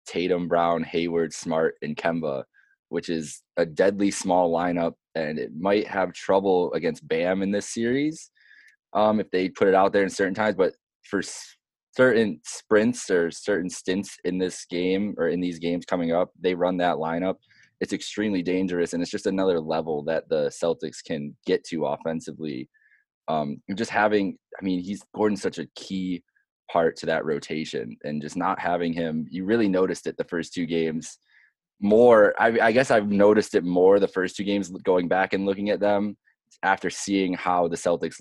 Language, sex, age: English, male, 20-39